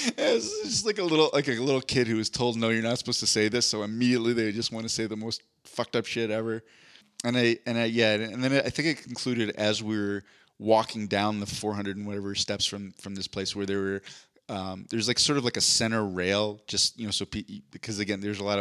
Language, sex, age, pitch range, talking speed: English, male, 20-39, 100-120 Hz, 260 wpm